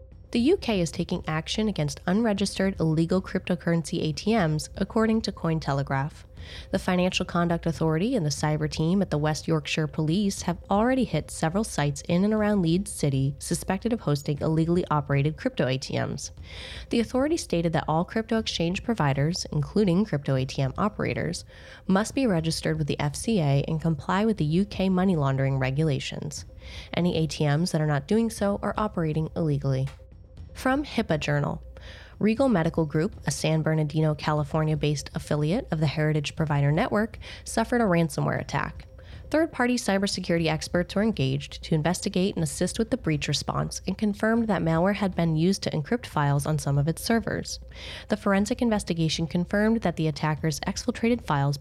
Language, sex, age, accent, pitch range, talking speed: English, female, 20-39, American, 150-200 Hz, 160 wpm